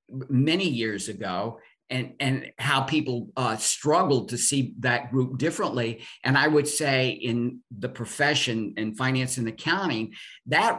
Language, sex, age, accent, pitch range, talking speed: English, male, 50-69, American, 115-145 Hz, 145 wpm